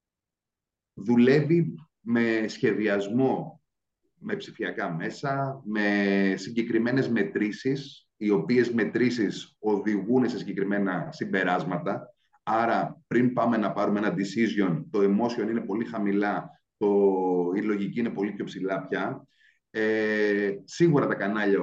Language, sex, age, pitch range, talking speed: Greek, male, 30-49, 105-125 Hz, 110 wpm